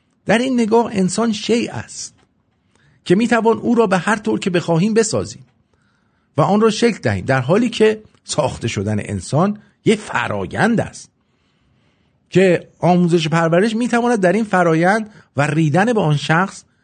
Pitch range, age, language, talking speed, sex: 115-185 Hz, 50-69, English, 155 wpm, male